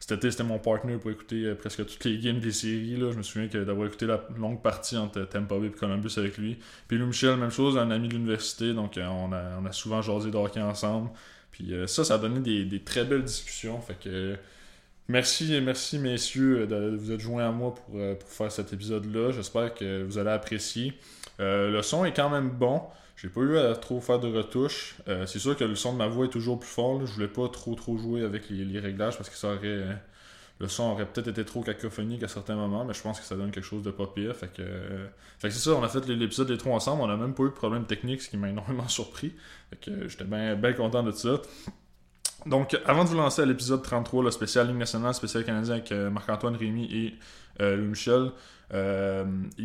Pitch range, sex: 105-125 Hz, male